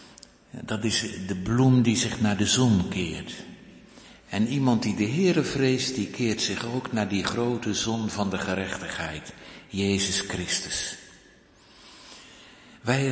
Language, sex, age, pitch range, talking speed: Dutch, male, 60-79, 95-125 Hz, 135 wpm